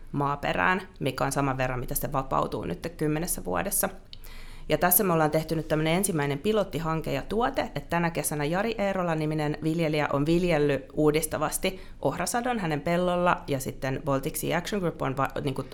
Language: Finnish